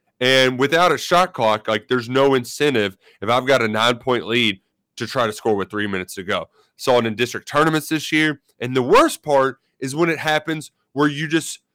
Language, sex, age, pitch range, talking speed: English, male, 30-49, 115-160 Hz, 220 wpm